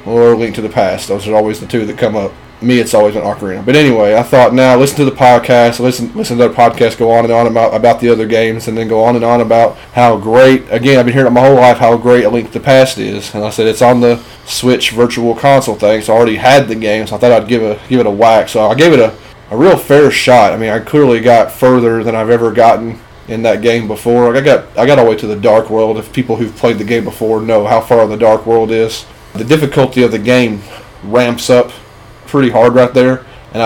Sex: male